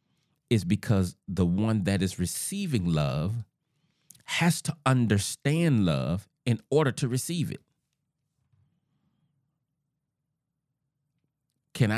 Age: 40-59